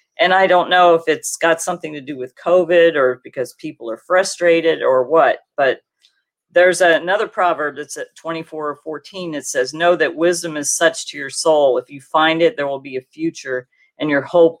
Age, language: 40-59, English